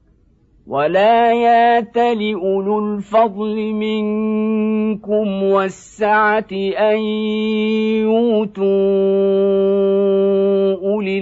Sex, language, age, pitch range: male, Arabic, 50-69, 180-210 Hz